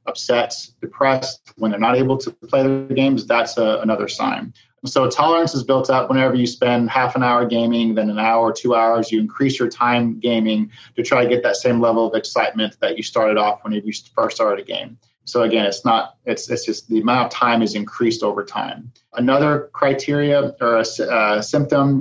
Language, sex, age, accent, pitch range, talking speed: English, male, 30-49, American, 115-130 Hz, 200 wpm